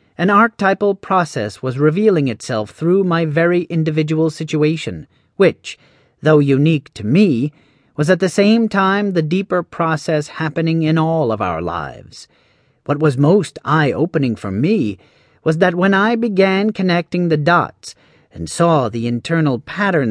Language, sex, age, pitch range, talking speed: English, male, 40-59, 135-175 Hz, 145 wpm